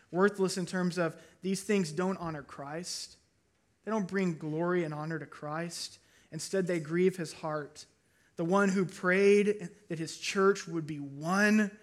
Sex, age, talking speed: male, 20-39, 160 wpm